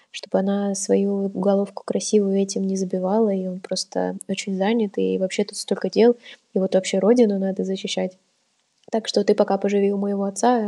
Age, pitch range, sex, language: 20-39, 195-220 Hz, female, Russian